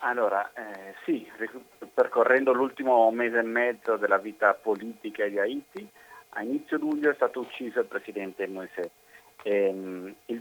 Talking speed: 140 wpm